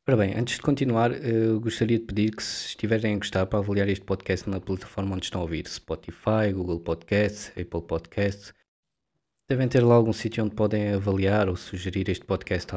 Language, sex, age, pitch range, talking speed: Portuguese, male, 20-39, 90-110 Hz, 195 wpm